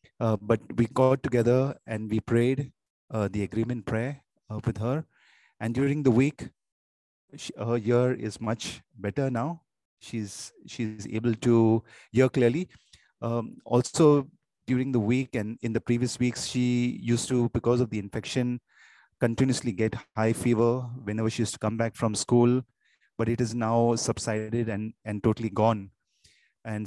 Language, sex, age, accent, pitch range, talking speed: English, male, 30-49, Indian, 110-125 Hz, 160 wpm